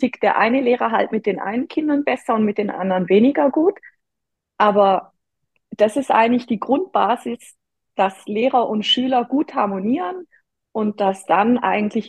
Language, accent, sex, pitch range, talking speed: German, German, female, 195-260 Hz, 155 wpm